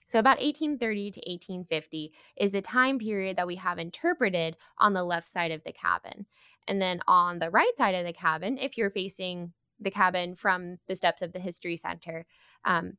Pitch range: 180-235 Hz